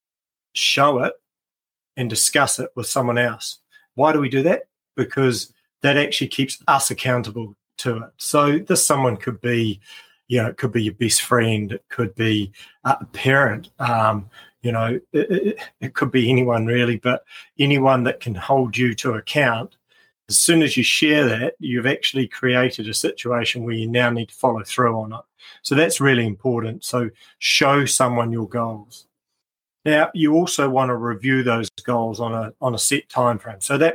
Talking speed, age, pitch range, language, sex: 180 wpm, 40-59, 115-135 Hz, English, male